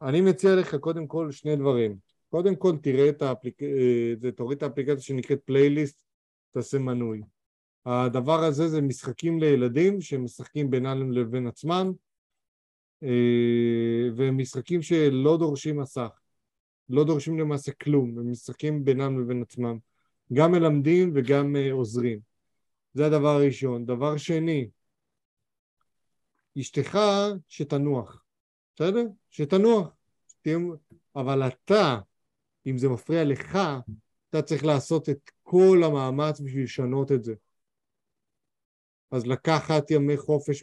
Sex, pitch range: male, 125-155 Hz